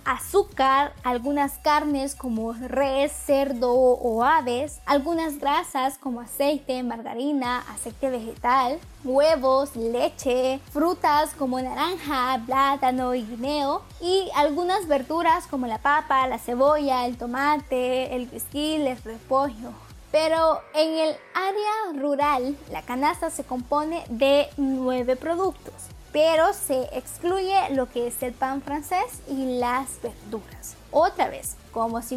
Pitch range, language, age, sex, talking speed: 255-310 Hz, Spanish, 10-29, female, 120 wpm